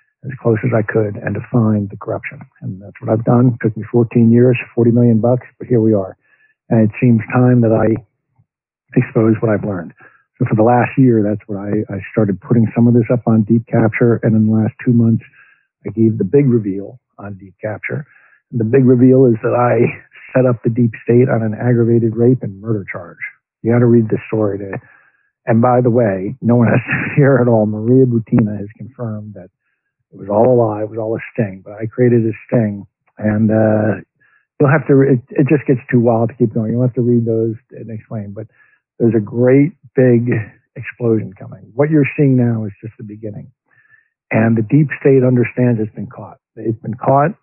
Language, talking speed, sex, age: English, 220 wpm, male, 50-69